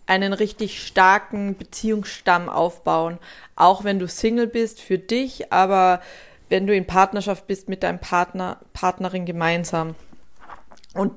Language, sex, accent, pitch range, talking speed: German, female, German, 190-225 Hz, 130 wpm